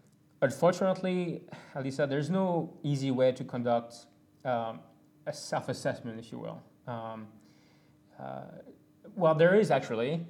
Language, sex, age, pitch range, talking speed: English, male, 30-49, 130-150 Hz, 115 wpm